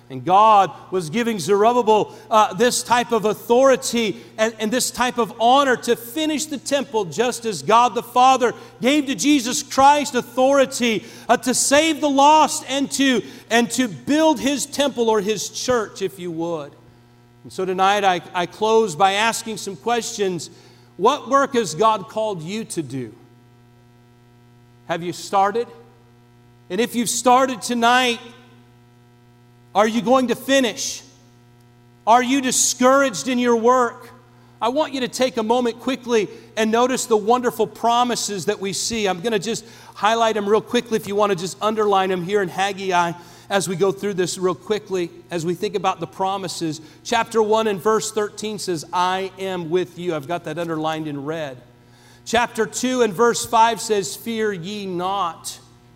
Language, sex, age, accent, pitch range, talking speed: English, male, 40-59, American, 175-240 Hz, 170 wpm